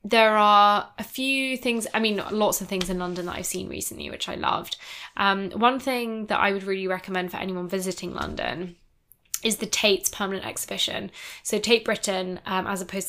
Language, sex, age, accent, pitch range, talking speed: English, female, 10-29, British, 185-225 Hz, 195 wpm